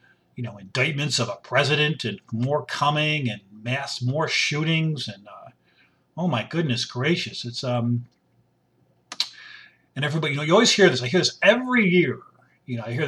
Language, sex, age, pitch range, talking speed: English, male, 40-59, 120-170 Hz, 175 wpm